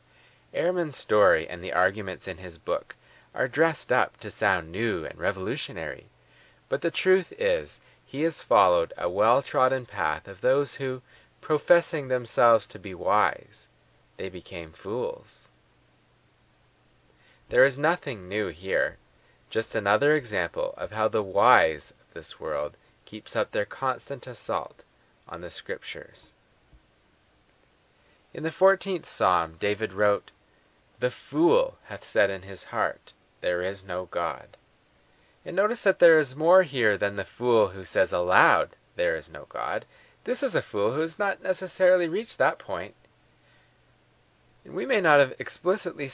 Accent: American